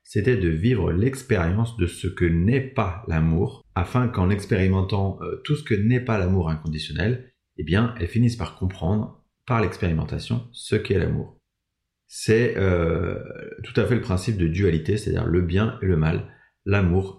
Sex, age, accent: male, 30-49, French